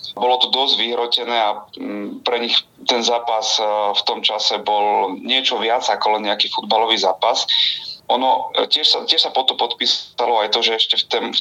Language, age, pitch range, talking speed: Slovak, 30-49, 100-115 Hz, 175 wpm